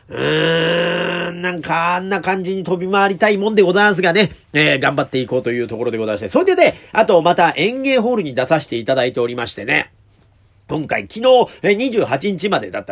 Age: 40-59